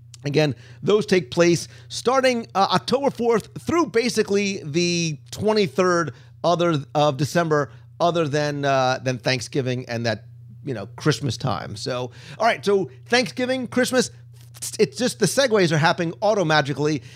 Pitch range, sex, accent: 135-210 Hz, male, American